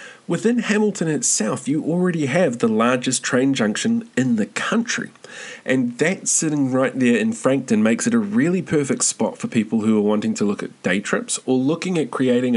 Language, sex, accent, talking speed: English, male, Australian, 190 wpm